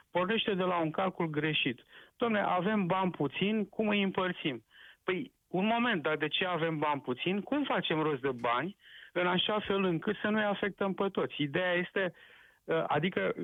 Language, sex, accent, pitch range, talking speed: Romanian, male, native, 155-200 Hz, 180 wpm